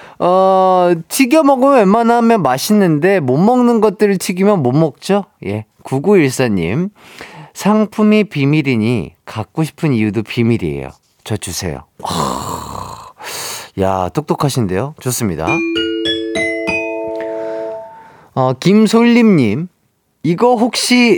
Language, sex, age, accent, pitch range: Korean, male, 40-59, native, 125-215 Hz